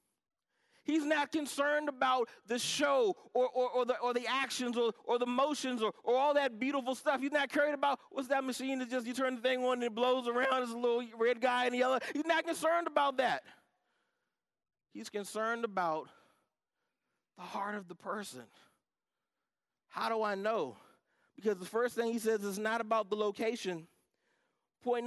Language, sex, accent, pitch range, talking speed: English, male, American, 195-255 Hz, 185 wpm